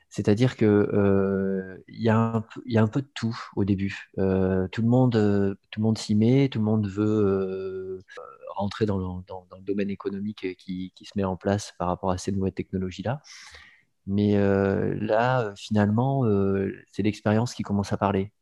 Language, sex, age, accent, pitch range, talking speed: French, male, 30-49, French, 95-110 Hz, 190 wpm